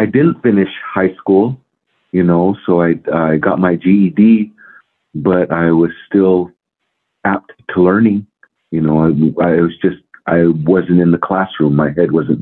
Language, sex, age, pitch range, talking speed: English, male, 40-59, 85-105 Hz, 165 wpm